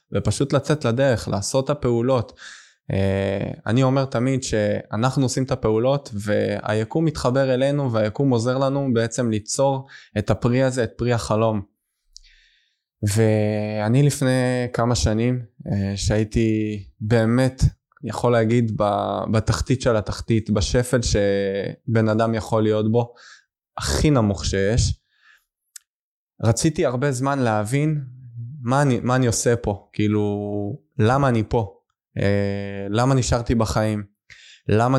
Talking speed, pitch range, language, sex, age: 115 wpm, 105-130 Hz, Hebrew, male, 20-39